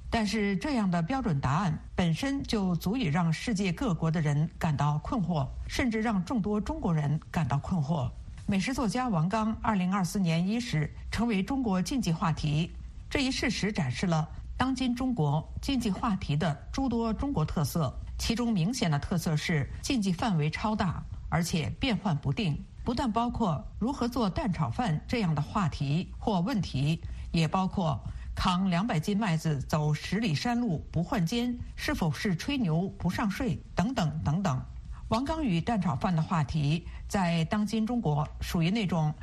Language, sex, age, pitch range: Chinese, female, 50-69, 155-225 Hz